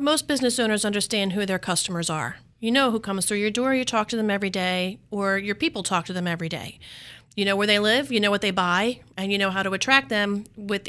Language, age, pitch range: English, 40-59, 190-225 Hz